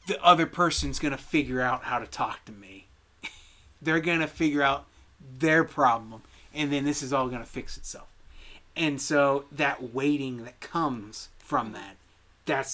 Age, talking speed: 30-49, 160 wpm